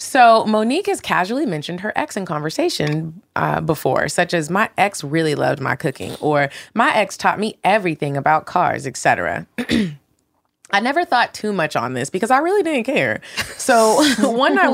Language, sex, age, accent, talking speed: English, female, 20-39, American, 175 wpm